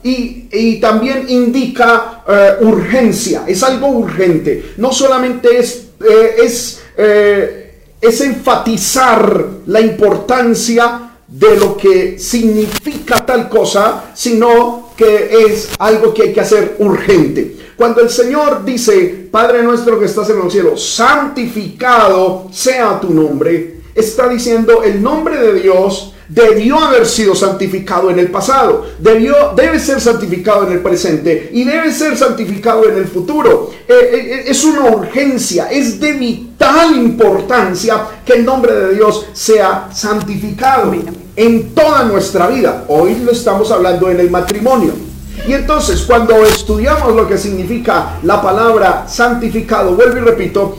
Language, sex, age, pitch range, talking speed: Spanish, male, 40-59, 205-255 Hz, 135 wpm